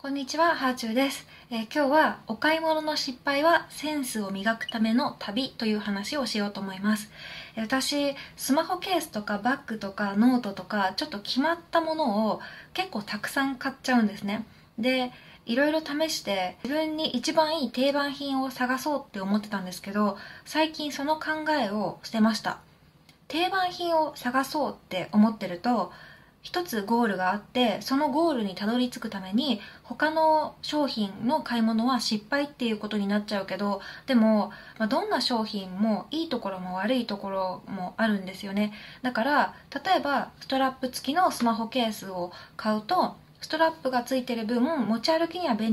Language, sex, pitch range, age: Japanese, female, 210-290 Hz, 20-39